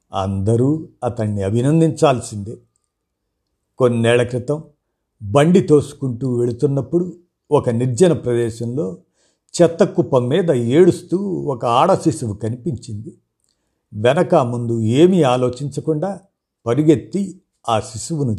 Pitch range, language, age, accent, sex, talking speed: 115-160 Hz, Telugu, 50-69, native, male, 85 wpm